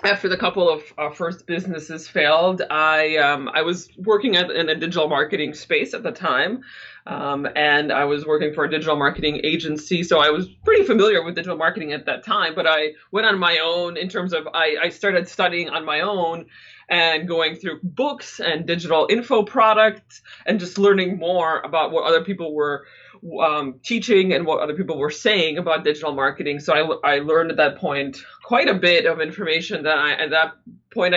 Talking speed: 200 wpm